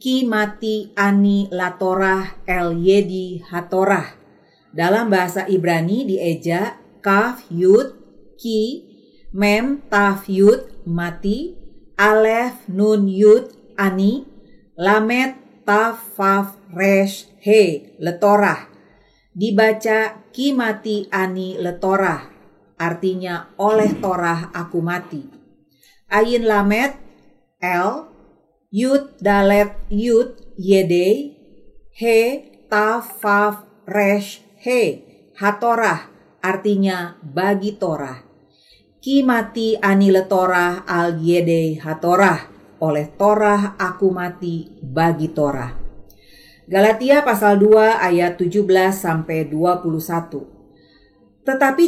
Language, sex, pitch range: Indonesian, female, 180-215 Hz